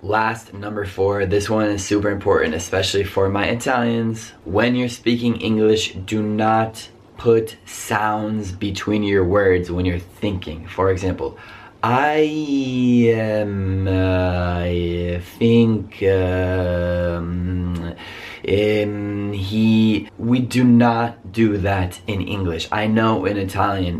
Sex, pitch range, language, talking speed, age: male, 95-115 Hz, Italian, 115 wpm, 20-39